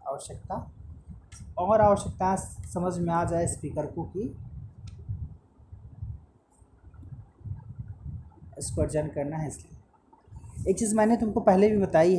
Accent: native